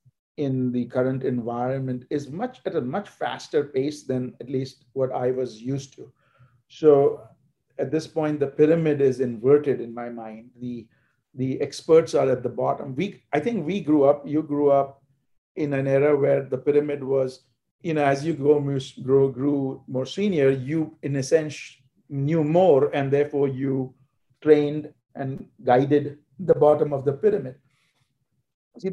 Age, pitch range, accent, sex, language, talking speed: 50-69, 130-155 Hz, Indian, male, English, 165 wpm